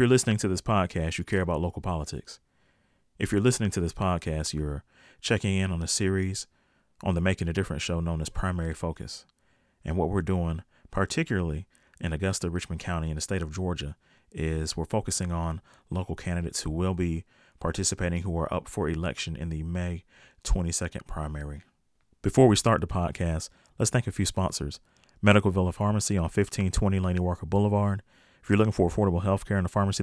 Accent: American